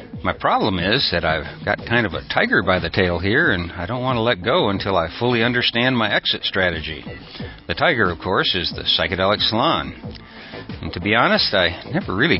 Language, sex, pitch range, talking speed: English, male, 85-110 Hz, 210 wpm